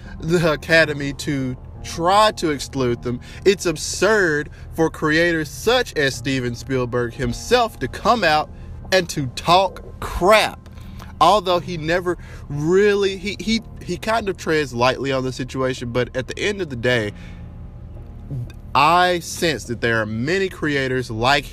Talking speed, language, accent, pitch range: 145 wpm, English, American, 120-160 Hz